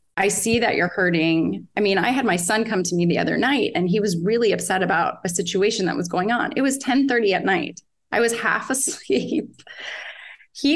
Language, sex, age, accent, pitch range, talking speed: English, female, 30-49, American, 185-225 Hz, 220 wpm